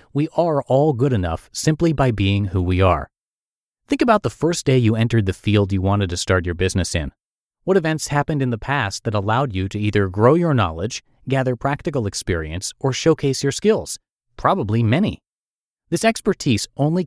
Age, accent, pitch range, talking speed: 30-49, American, 100-140 Hz, 185 wpm